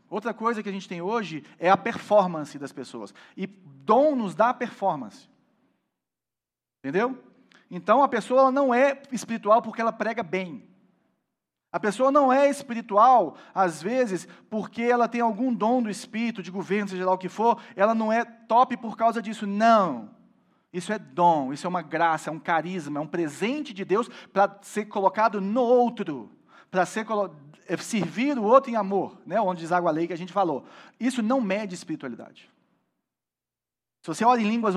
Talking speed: 180 wpm